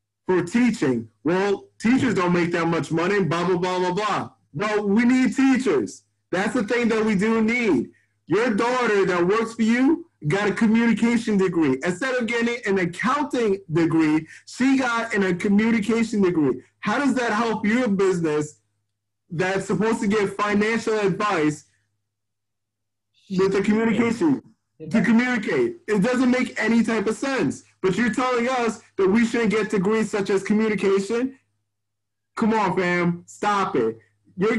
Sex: male